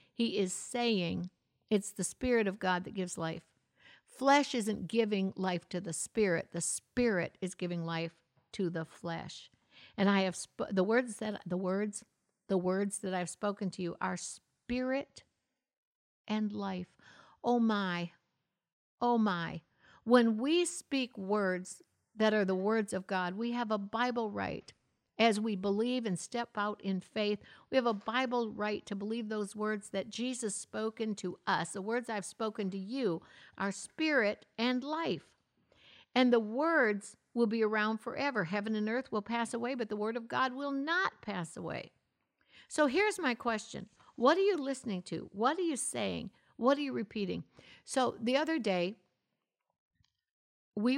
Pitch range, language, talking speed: 190-240 Hz, English, 165 wpm